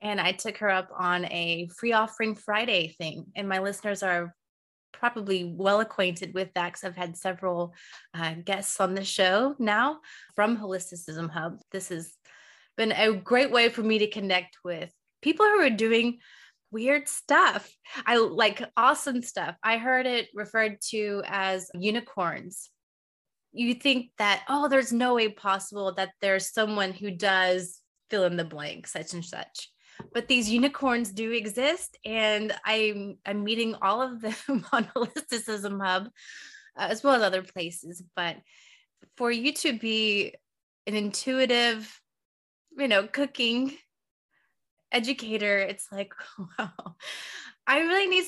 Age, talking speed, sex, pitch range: 20-39, 150 wpm, female, 185-240 Hz